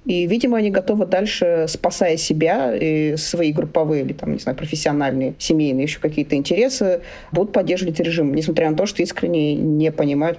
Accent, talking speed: native, 170 wpm